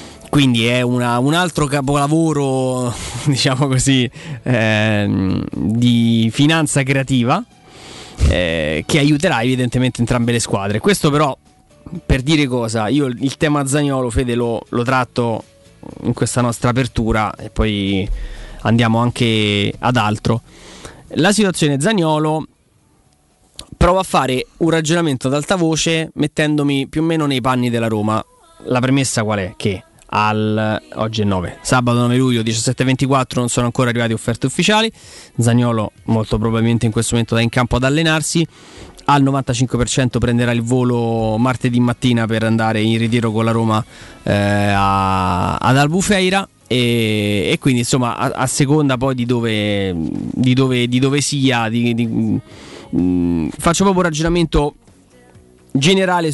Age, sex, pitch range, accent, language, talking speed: 20-39, male, 115-145 Hz, native, Italian, 140 wpm